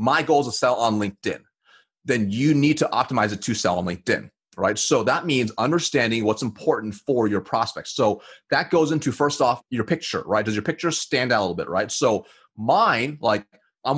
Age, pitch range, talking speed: 30-49, 120-155 Hz, 210 wpm